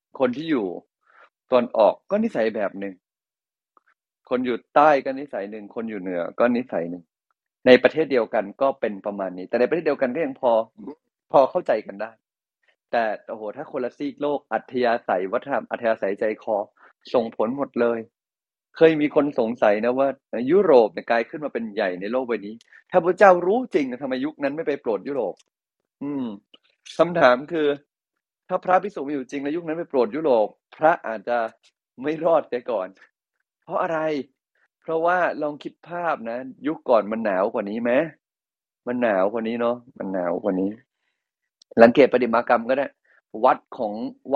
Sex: male